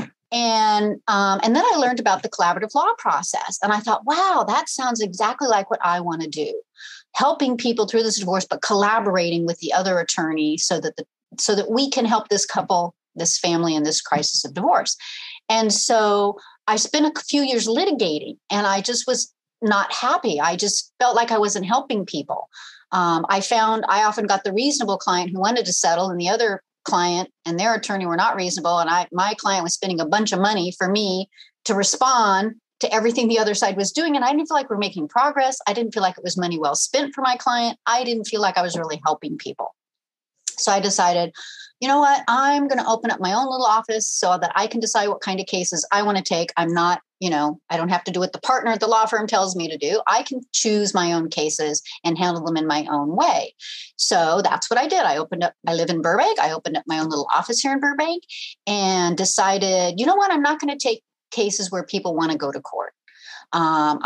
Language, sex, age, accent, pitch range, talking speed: English, female, 40-59, American, 175-240 Hz, 235 wpm